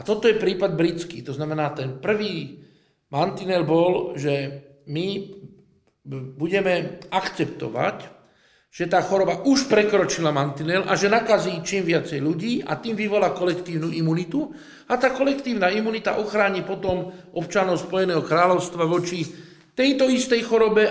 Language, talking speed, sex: Slovak, 130 wpm, male